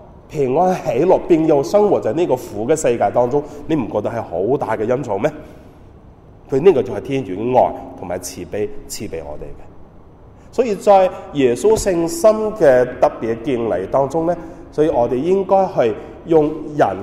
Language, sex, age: Chinese, male, 30-49